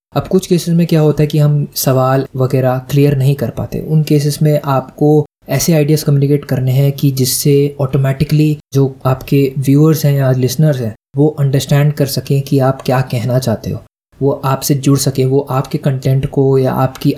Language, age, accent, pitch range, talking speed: Hindi, 20-39, native, 130-150 Hz, 190 wpm